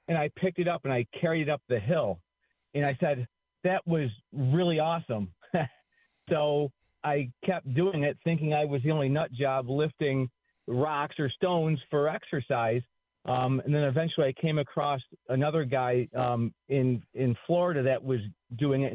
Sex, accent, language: male, American, English